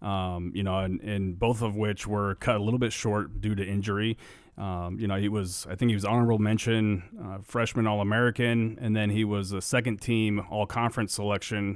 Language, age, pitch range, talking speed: English, 30-49, 100-115 Hz, 205 wpm